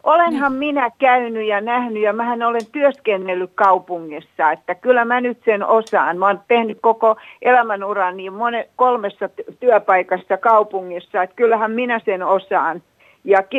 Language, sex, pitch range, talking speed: Finnish, female, 195-250 Hz, 135 wpm